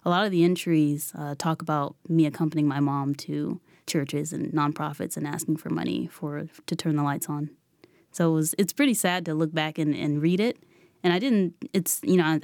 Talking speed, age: 220 wpm, 20-39